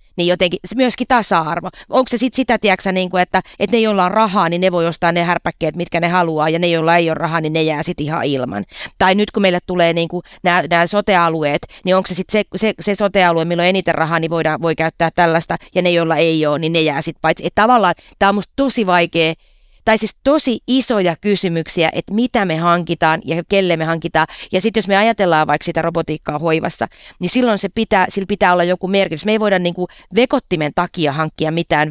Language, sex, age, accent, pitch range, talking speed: Finnish, female, 30-49, native, 165-205 Hz, 220 wpm